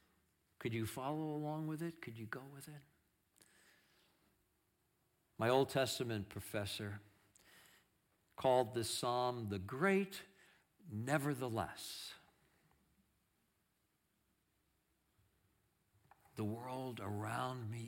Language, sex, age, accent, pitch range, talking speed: English, male, 60-79, American, 105-155 Hz, 85 wpm